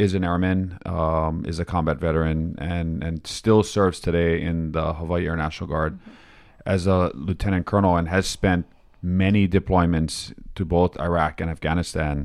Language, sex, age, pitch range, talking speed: English, male, 30-49, 80-95 Hz, 160 wpm